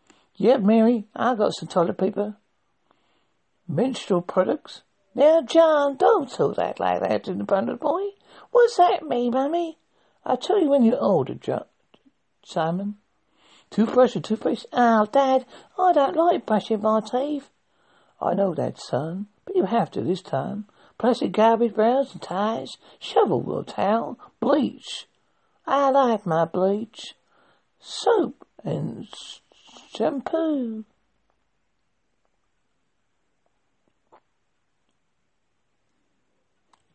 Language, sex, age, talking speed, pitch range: English, male, 60-79, 115 wpm, 205-285 Hz